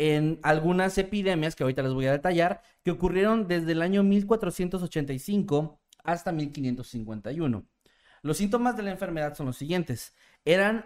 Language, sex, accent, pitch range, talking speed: Spanish, male, Mexican, 130-175 Hz, 145 wpm